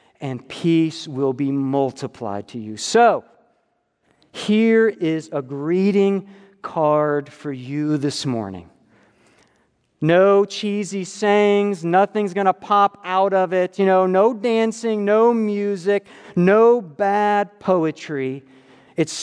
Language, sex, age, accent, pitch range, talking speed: English, male, 50-69, American, 145-210 Hz, 115 wpm